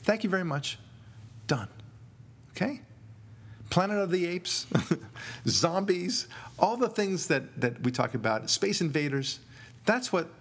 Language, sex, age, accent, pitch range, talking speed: English, male, 50-69, American, 110-130 Hz, 135 wpm